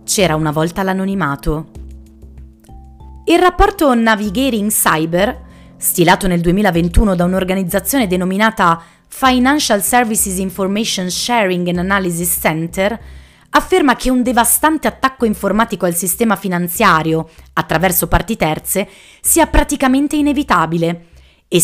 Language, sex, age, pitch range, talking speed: Italian, female, 30-49, 165-235 Hz, 105 wpm